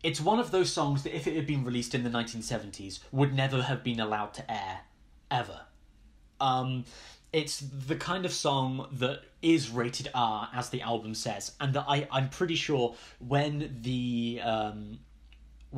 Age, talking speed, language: 10-29, 175 wpm, English